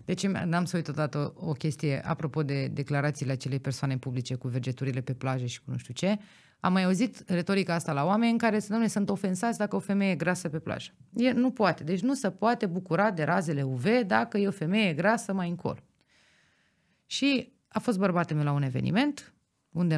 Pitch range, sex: 150-230 Hz, female